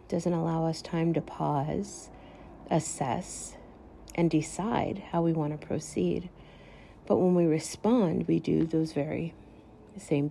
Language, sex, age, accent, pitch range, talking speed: English, female, 50-69, American, 150-175 Hz, 135 wpm